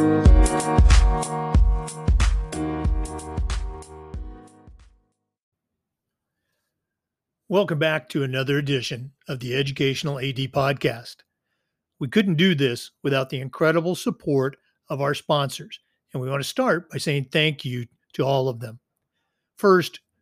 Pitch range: 130-165 Hz